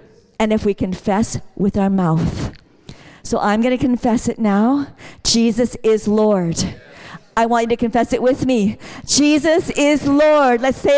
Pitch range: 200-290 Hz